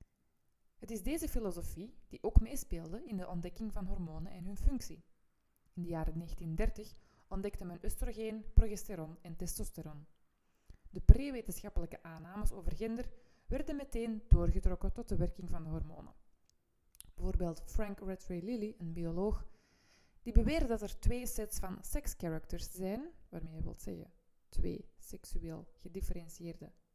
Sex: female